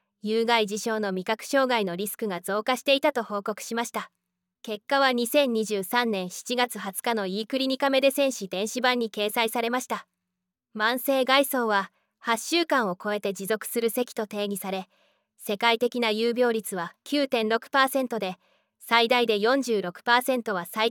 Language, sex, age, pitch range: Japanese, female, 20-39, 210-250 Hz